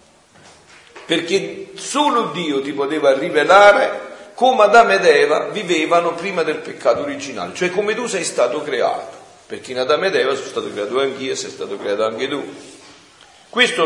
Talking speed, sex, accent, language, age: 160 wpm, male, native, Italian, 50-69